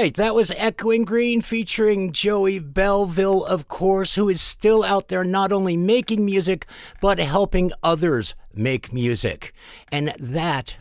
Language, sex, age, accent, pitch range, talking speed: English, male, 50-69, American, 140-200 Hz, 140 wpm